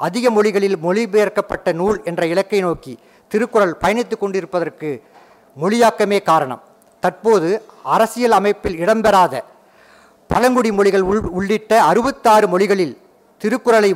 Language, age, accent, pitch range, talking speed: Tamil, 50-69, native, 175-220 Hz, 95 wpm